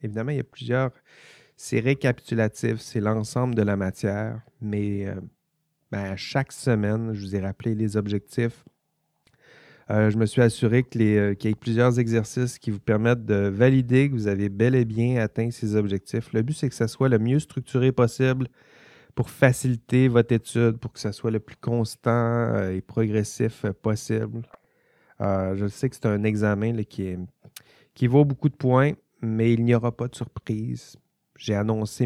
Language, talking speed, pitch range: French, 185 wpm, 105-125 Hz